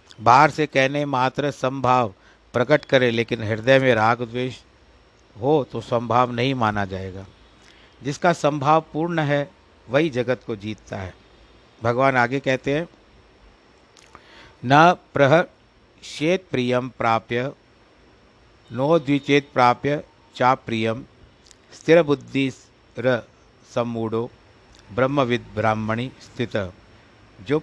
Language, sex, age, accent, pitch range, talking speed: Hindi, male, 60-79, native, 110-135 Hz, 100 wpm